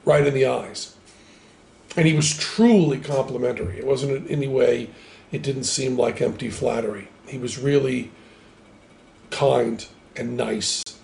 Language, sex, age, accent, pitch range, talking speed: English, male, 50-69, American, 120-155 Hz, 140 wpm